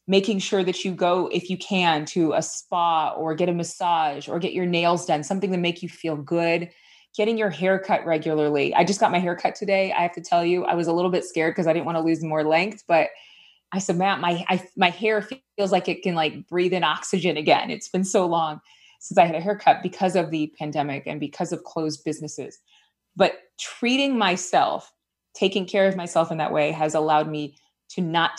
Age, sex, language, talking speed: 20-39, female, English, 225 wpm